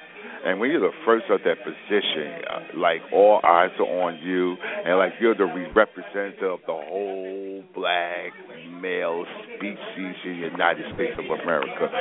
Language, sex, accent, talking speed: English, male, American, 160 wpm